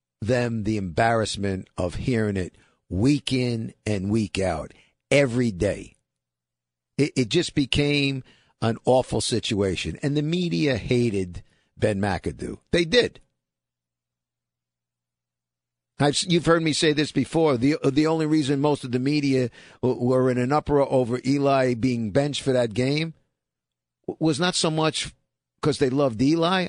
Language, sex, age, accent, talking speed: English, male, 50-69, American, 140 wpm